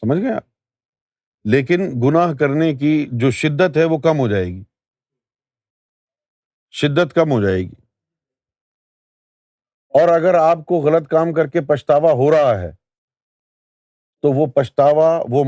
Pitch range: 120-160 Hz